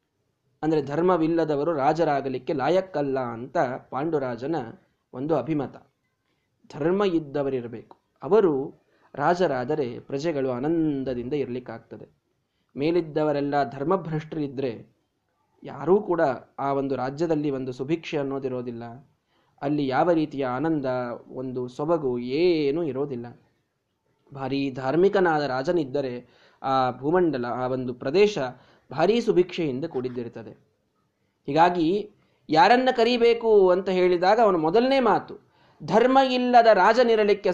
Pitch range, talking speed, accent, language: 135-195 Hz, 85 wpm, native, Kannada